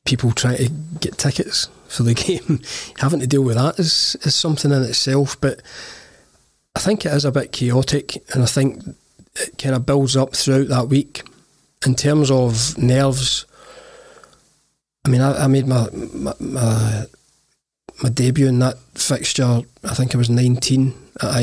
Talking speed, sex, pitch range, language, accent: 160 wpm, male, 125-145 Hz, English, British